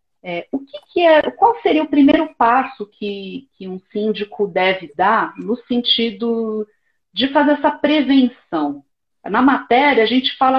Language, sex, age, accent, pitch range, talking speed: Portuguese, female, 40-59, Brazilian, 175-255 Hz, 155 wpm